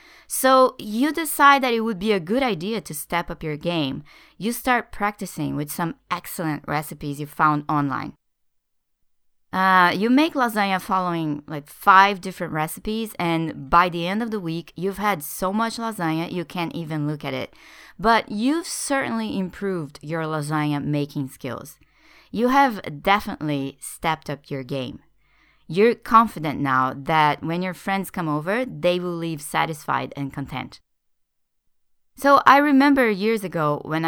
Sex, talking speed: female, 155 wpm